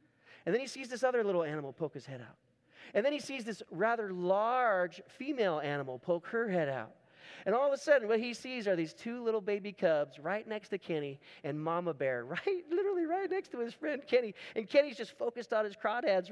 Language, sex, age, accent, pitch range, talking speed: English, male, 30-49, American, 145-245 Hz, 225 wpm